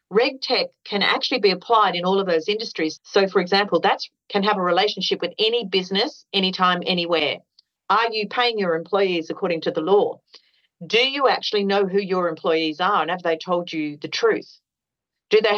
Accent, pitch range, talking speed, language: Australian, 160-200 Hz, 190 wpm, English